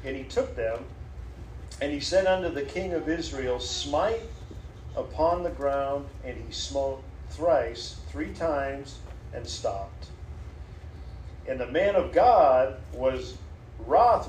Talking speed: 130 wpm